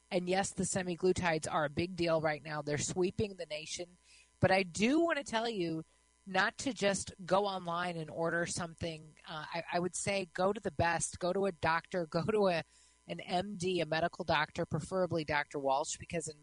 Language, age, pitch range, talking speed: English, 30-49, 150-190 Hz, 200 wpm